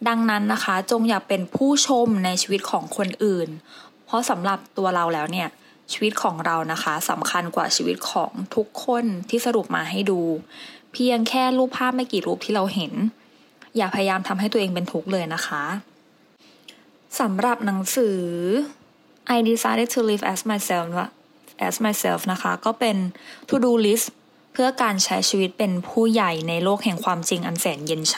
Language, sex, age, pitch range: English, female, 20-39, 180-230 Hz